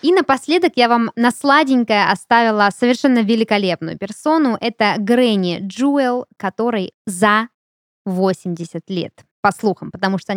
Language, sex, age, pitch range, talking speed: Russian, female, 20-39, 185-245 Hz, 120 wpm